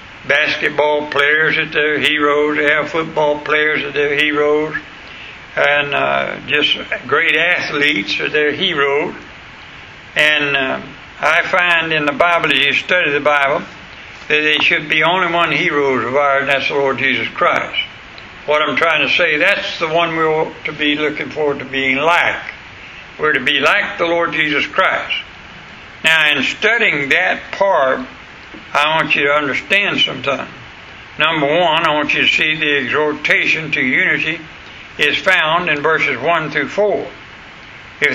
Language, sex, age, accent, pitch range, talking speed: English, male, 60-79, American, 140-160 Hz, 160 wpm